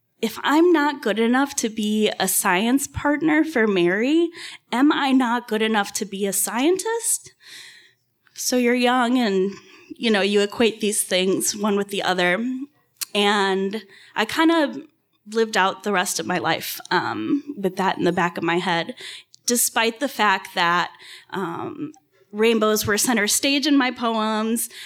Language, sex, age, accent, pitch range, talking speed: English, female, 10-29, American, 195-250 Hz, 160 wpm